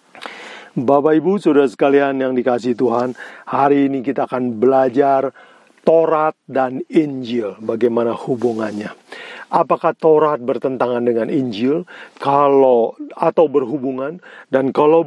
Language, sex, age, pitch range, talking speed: Indonesian, male, 50-69, 130-165 Hz, 110 wpm